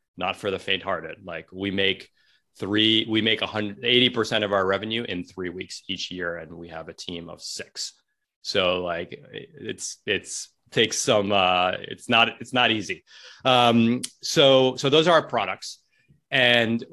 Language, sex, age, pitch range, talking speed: English, male, 30-49, 90-110 Hz, 165 wpm